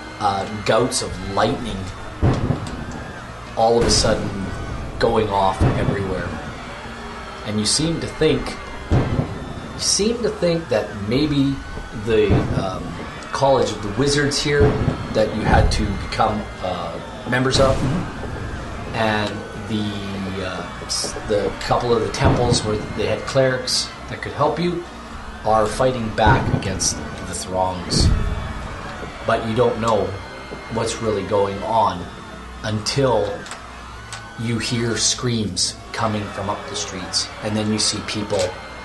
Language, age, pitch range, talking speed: English, 30-49, 100-125 Hz, 125 wpm